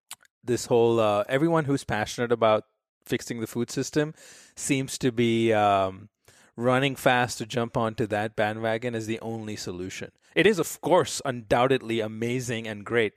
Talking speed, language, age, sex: 155 wpm, English, 30-49, male